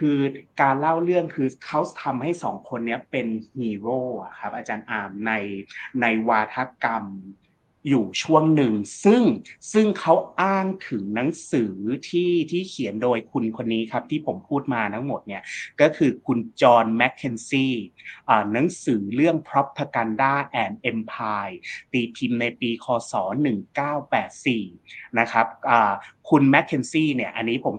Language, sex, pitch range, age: Thai, male, 110-140 Hz, 30-49